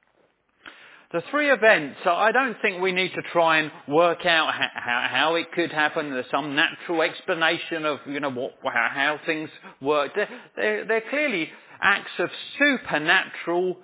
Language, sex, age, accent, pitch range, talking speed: English, male, 40-59, British, 155-220 Hz, 150 wpm